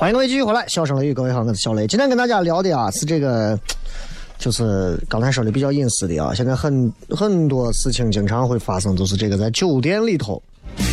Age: 30-49